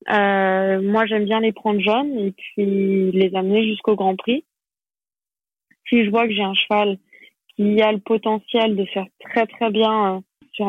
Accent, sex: French, female